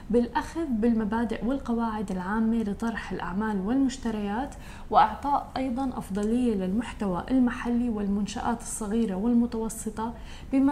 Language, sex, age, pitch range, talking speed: Arabic, female, 10-29, 205-235 Hz, 90 wpm